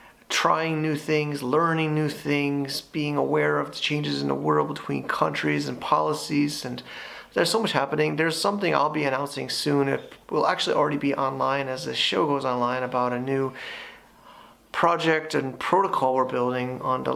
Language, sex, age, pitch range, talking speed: English, male, 30-49, 130-155 Hz, 175 wpm